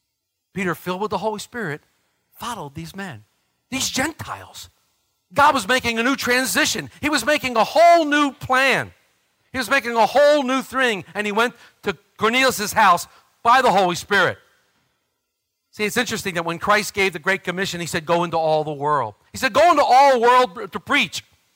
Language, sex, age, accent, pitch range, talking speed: English, male, 50-69, American, 210-280 Hz, 185 wpm